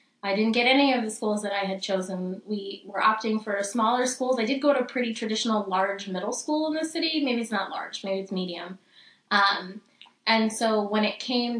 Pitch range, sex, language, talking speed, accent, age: 190-225 Hz, female, English, 220 wpm, American, 20-39